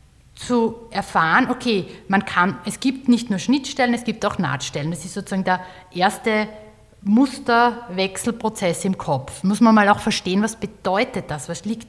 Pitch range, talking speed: 180-220 Hz, 160 wpm